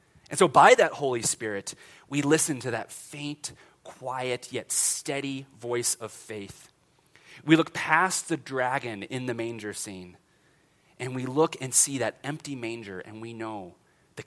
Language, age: English, 30-49